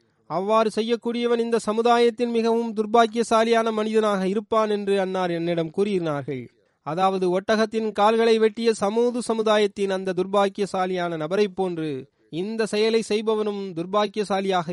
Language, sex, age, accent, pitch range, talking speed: Tamil, male, 30-49, native, 180-220 Hz, 105 wpm